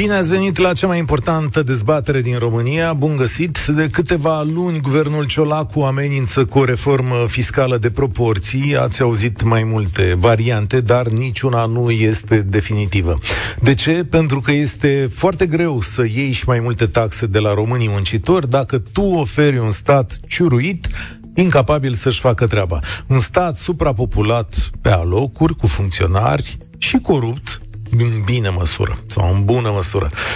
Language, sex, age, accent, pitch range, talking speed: Romanian, male, 40-59, native, 110-165 Hz, 150 wpm